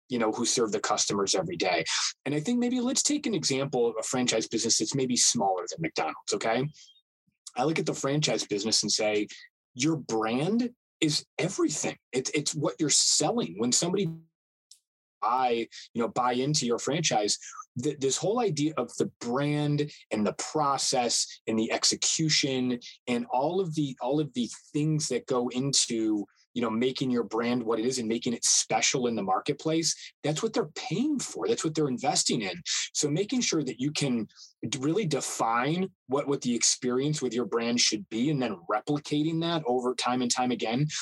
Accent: American